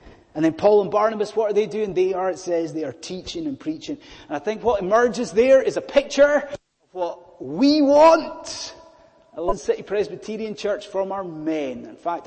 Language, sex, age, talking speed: English, male, 30-49, 200 wpm